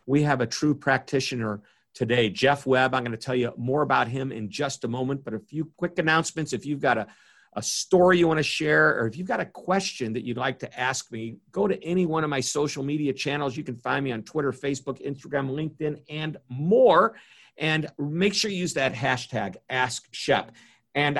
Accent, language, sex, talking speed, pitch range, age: American, English, male, 215 wpm, 125-165 Hz, 50-69